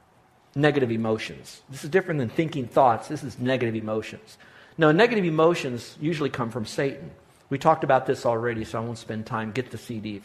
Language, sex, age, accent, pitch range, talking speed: English, male, 50-69, American, 125-165 Hz, 195 wpm